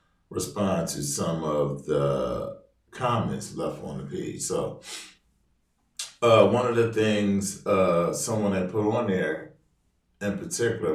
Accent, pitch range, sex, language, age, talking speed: American, 75-100 Hz, male, English, 40-59, 130 wpm